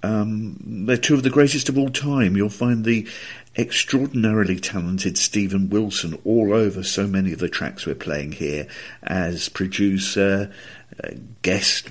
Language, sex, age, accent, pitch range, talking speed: English, male, 50-69, British, 95-130 Hz, 145 wpm